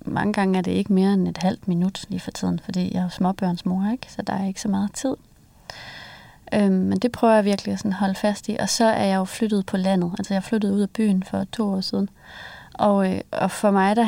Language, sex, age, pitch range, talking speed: English, female, 30-49, 185-215 Hz, 255 wpm